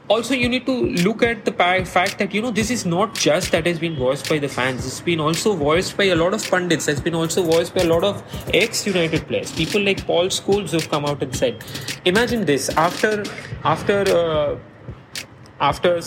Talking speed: 210 wpm